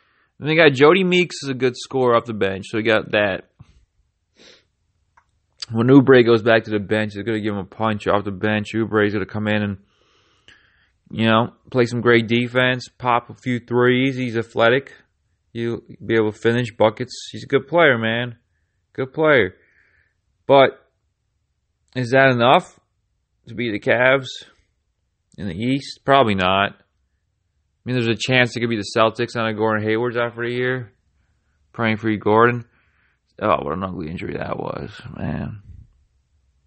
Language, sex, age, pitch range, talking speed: English, male, 20-39, 95-120 Hz, 175 wpm